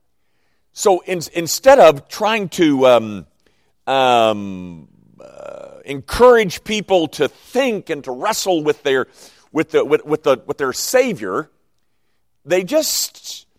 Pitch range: 120-200 Hz